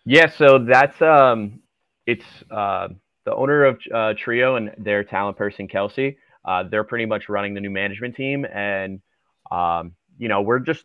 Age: 20-39